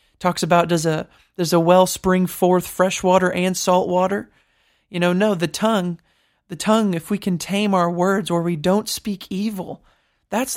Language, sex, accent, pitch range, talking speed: English, male, American, 175-215 Hz, 185 wpm